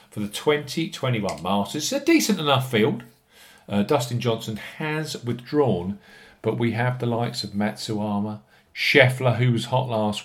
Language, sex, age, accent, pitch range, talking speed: English, male, 50-69, British, 105-150 Hz, 150 wpm